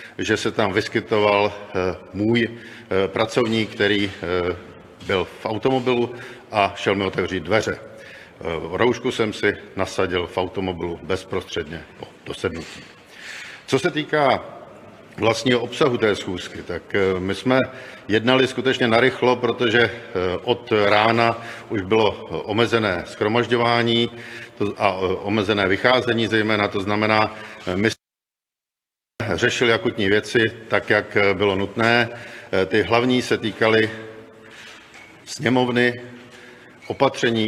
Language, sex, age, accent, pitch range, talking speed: Czech, male, 50-69, native, 100-120 Hz, 105 wpm